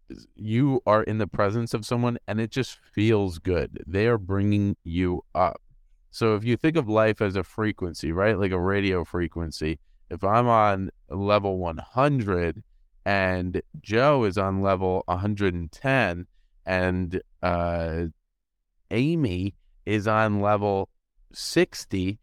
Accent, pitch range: American, 90-120 Hz